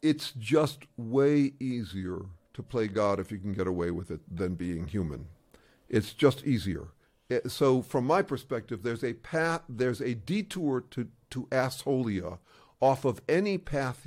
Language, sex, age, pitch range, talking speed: English, male, 50-69, 110-140 Hz, 160 wpm